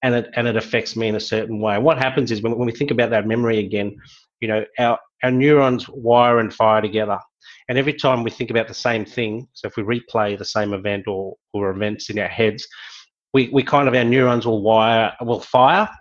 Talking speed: 230 wpm